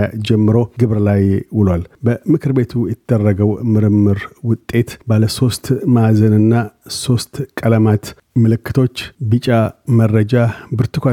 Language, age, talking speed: Amharic, 50-69, 95 wpm